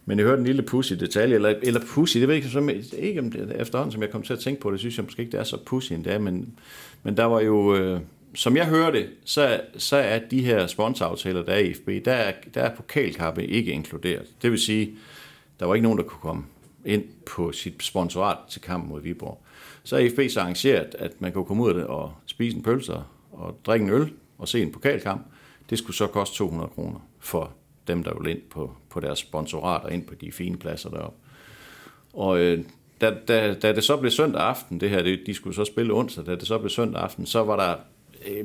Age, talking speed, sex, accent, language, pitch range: 60-79, 240 wpm, male, native, Danish, 95-130 Hz